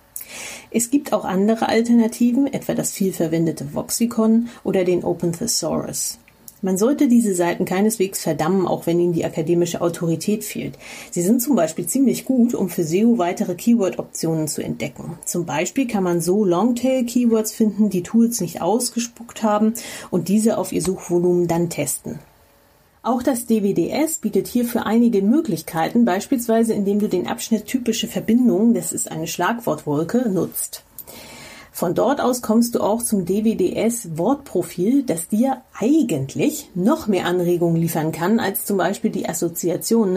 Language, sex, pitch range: German, female, 180-230 Hz